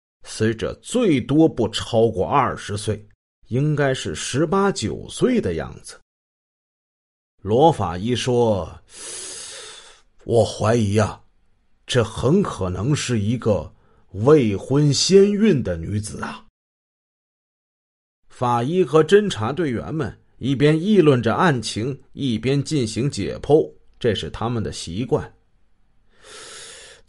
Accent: native